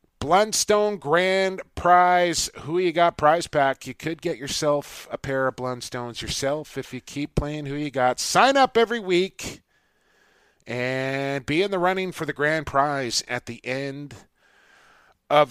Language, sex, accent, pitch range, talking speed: English, male, American, 140-190 Hz, 160 wpm